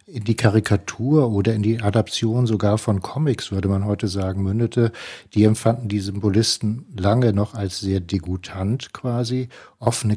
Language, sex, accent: German, male, German